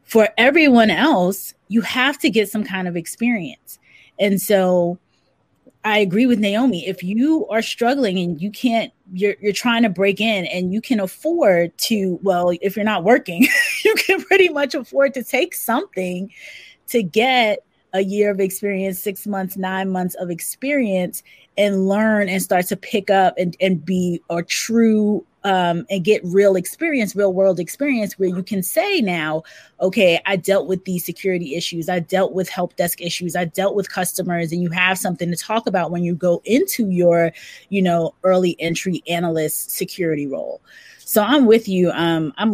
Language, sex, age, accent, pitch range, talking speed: English, female, 20-39, American, 180-225 Hz, 180 wpm